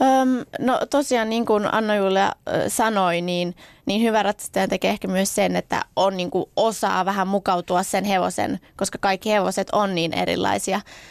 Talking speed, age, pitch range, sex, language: 160 wpm, 20-39, 195-210 Hz, female, Finnish